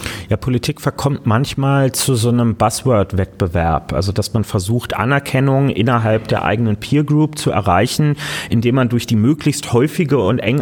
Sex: male